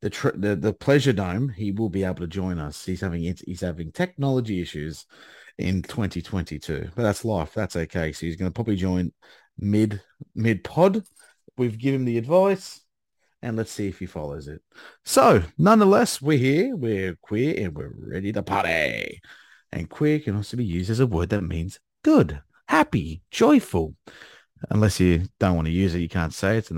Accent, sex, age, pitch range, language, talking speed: Australian, male, 30-49, 90-125 Hz, English, 185 wpm